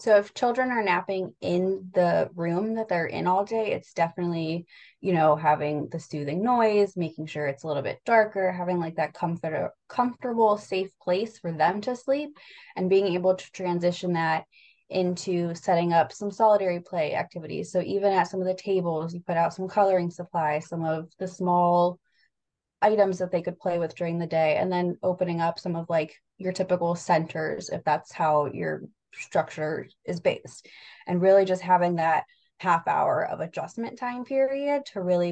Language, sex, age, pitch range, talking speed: English, female, 20-39, 170-205 Hz, 185 wpm